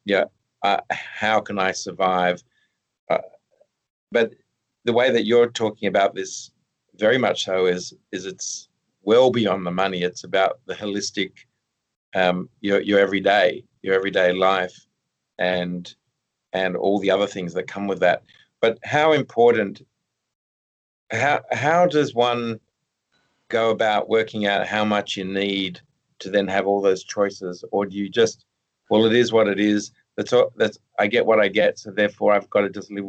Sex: male